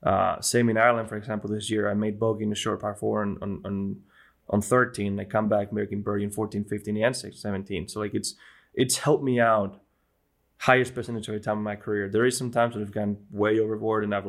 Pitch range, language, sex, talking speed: 100-115 Hz, English, male, 245 wpm